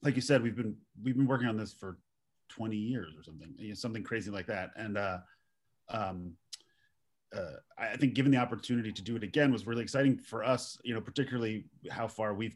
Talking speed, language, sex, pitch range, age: 220 wpm, English, male, 100-125 Hz, 30-49